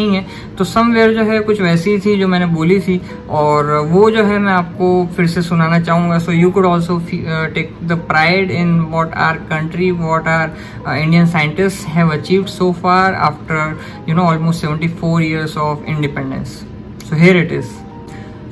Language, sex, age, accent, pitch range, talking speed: Hindi, female, 20-39, native, 165-205 Hz, 70 wpm